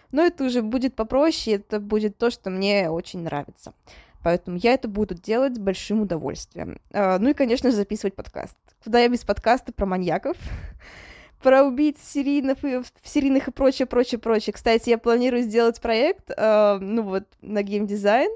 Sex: female